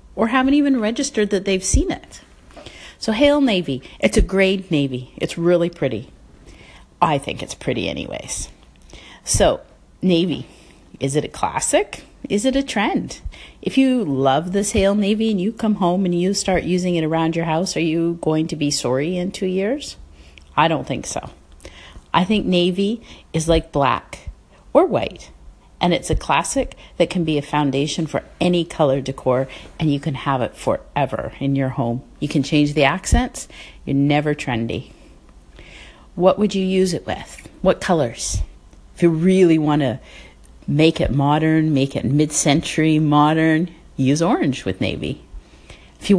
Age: 40-59